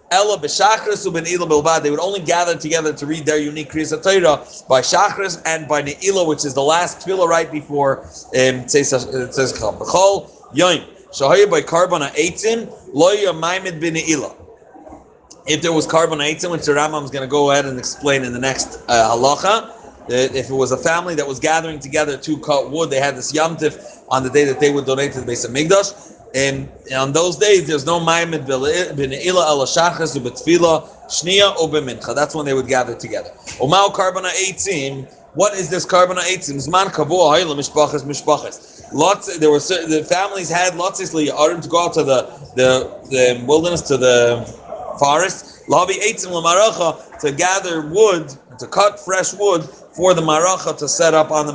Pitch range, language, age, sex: 140-180 Hz, English, 30-49, male